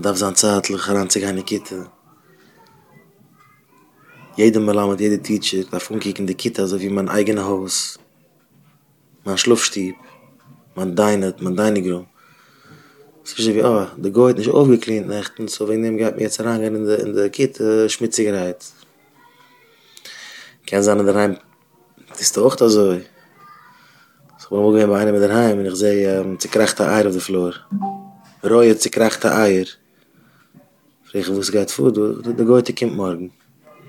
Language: English